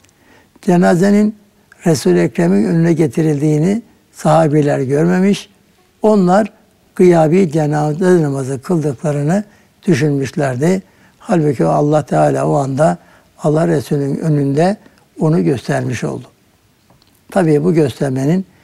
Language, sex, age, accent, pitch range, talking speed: Turkish, male, 60-79, native, 145-185 Hz, 85 wpm